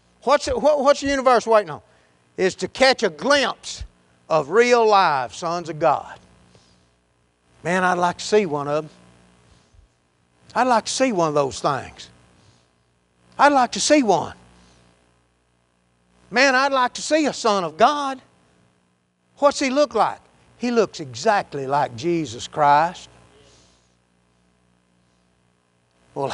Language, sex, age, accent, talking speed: English, male, 60-79, American, 130 wpm